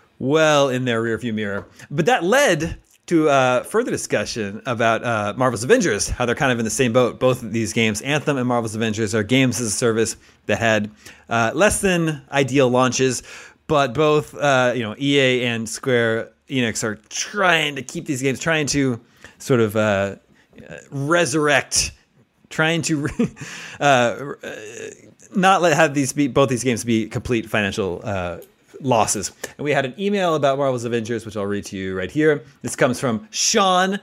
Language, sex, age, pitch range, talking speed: English, male, 30-49, 115-160 Hz, 180 wpm